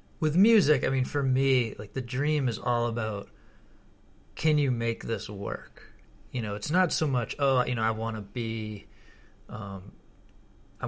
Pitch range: 110-135 Hz